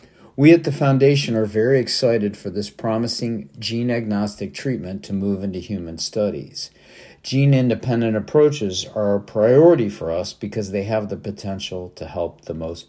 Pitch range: 95-125 Hz